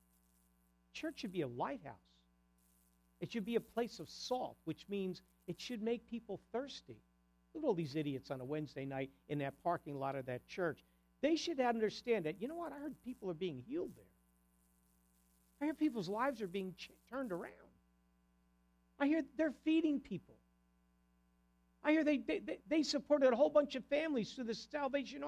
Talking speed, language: 185 wpm, English